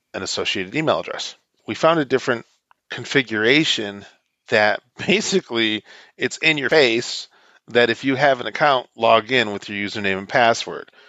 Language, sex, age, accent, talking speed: English, male, 40-59, American, 145 wpm